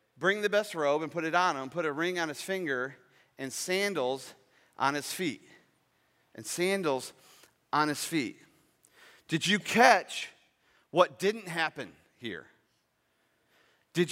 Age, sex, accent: 40-59, male, American